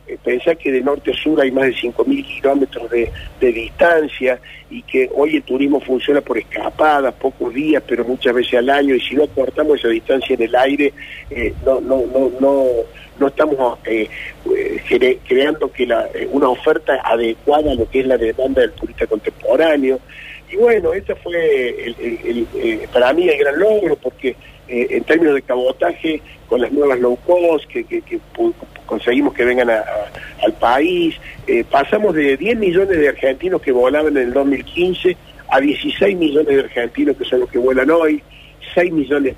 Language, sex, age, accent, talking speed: Spanish, male, 50-69, Argentinian, 185 wpm